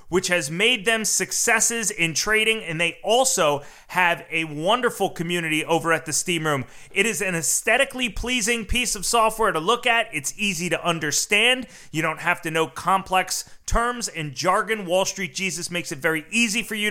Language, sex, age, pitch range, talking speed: English, male, 30-49, 175-230 Hz, 185 wpm